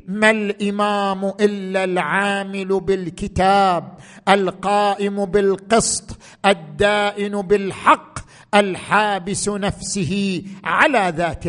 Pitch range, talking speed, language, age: 180-240 Hz, 70 wpm, Arabic, 50-69